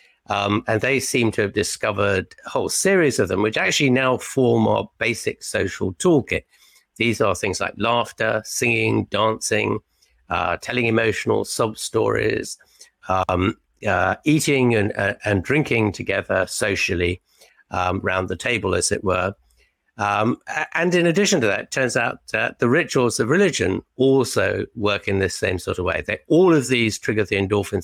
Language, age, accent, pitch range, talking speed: English, 60-79, British, 95-120 Hz, 165 wpm